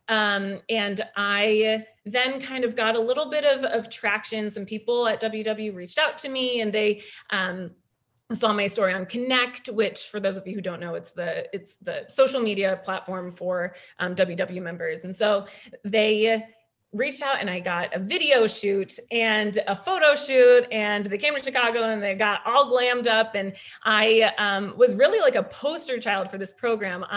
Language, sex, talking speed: English, female, 190 wpm